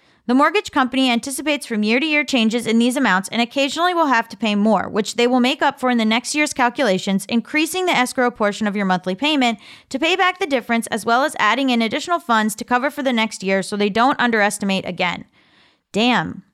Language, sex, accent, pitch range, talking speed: English, female, American, 215-275 Hz, 225 wpm